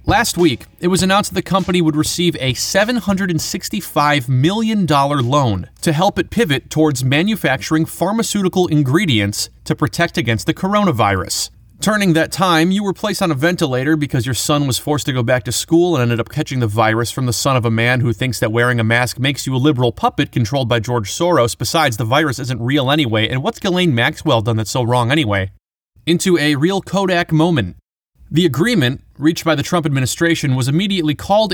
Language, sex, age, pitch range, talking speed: English, male, 30-49, 120-175 Hz, 195 wpm